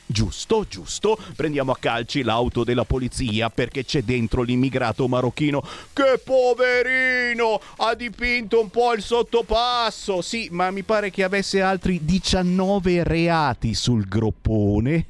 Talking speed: 125 wpm